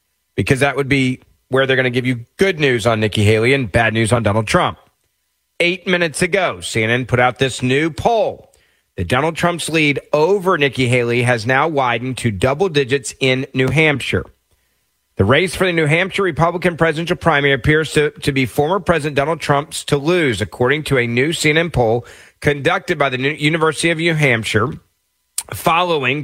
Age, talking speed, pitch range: 40-59, 180 wpm, 120-155 Hz